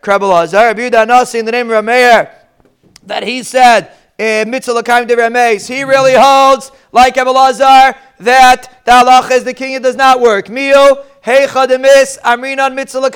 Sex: male